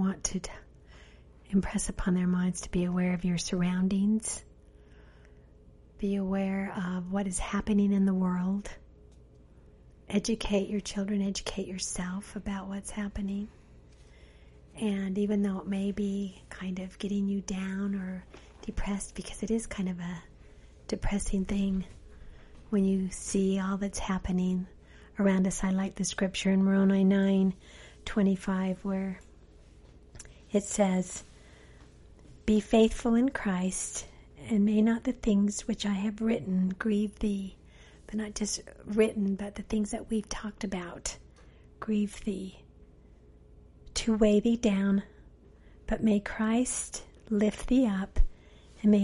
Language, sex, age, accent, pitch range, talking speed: English, female, 40-59, American, 180-210 Hz, 135 wpm